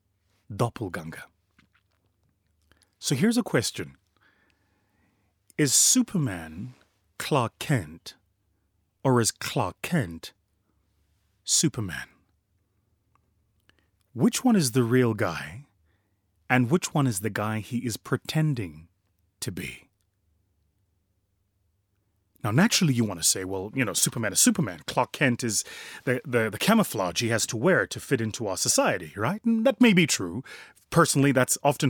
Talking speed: 130 wpm